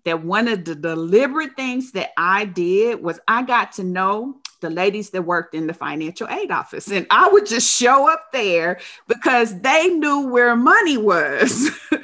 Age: 40-59